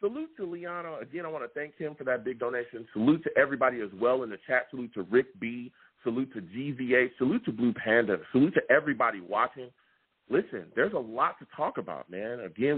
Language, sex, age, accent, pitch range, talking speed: English, male, 40-59, American, 115-140 Hz, 210 wpm